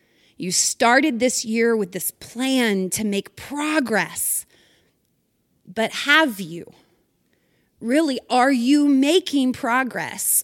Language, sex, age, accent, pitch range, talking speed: English, female, 30-49, American, 210-280 Hz, 105 wpm